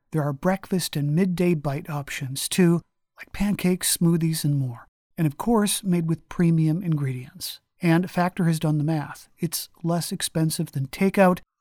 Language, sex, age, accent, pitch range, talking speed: English, male, 50-69, American, 150-190 Hz, 160 wpm